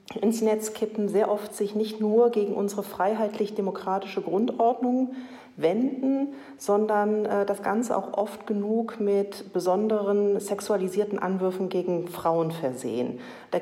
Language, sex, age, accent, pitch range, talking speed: German, female, 40-59, German, 190-220 Hz, 125 wpm